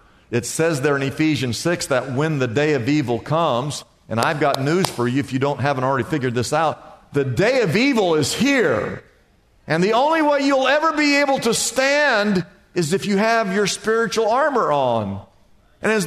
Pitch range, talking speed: 150-225 Hz, 195 wpm